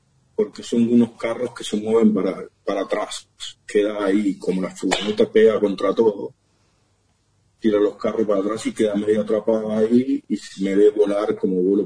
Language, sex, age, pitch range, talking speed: Spanish, male, 40-59, 105-120 Hz, 175 wpm